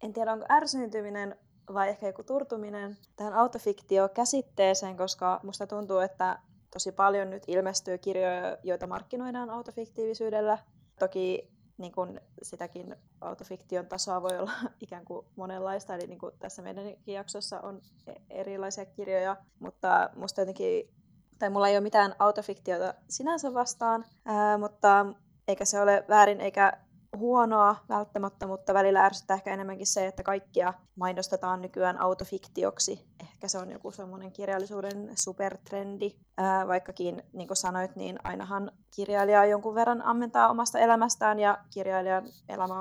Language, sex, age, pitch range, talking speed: Finnish, female, 20-39, 185-205 Hz, 135 wpm